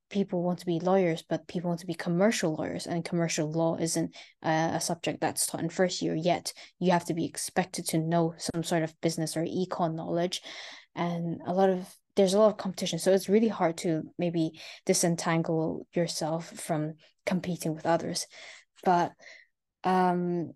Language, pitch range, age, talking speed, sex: English, 165-190 Hz, 10-29, 180 wpm, female